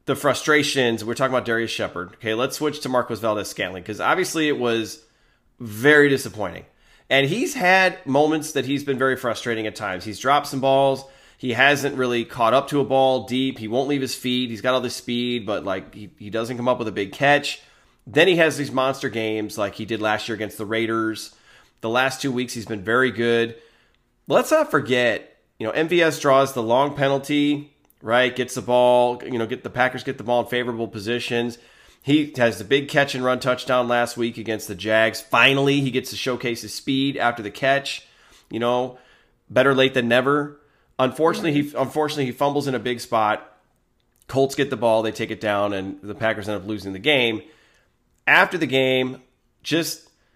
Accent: American